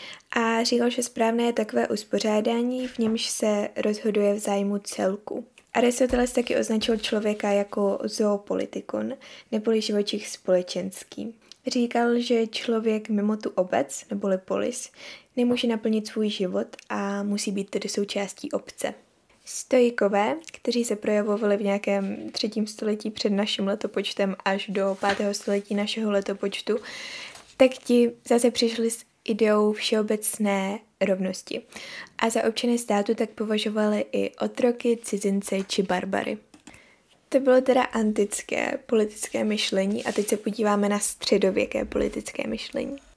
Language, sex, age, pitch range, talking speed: Czech, female, 10-29, 205-240 Hz, 125 wpm